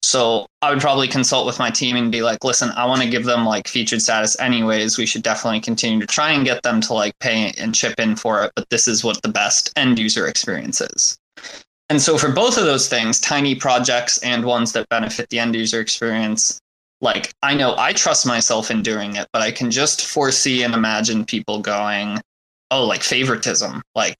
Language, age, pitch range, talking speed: English, 20-39, 110-130 Hz, 215 wpm